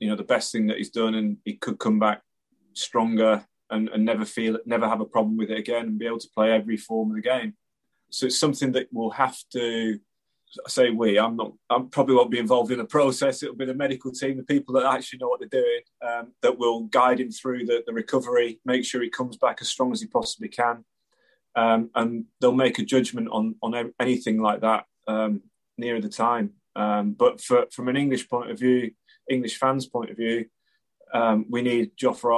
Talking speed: 225 wpm